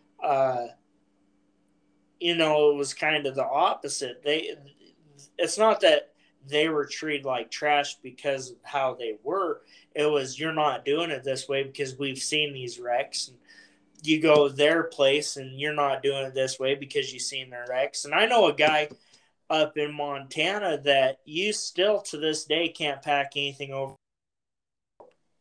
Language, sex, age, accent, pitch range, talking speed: English, male, 20-39, American, 135-155 Hz, 170 wpm